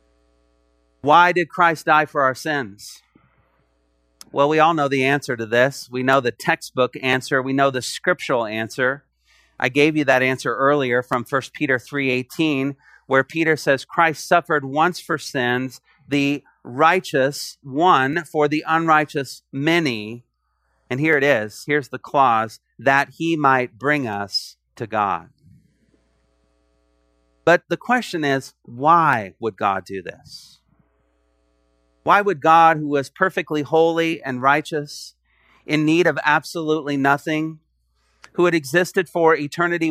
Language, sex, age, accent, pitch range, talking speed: English, male, 40-59, American, 115-160 Hz, 140 wpm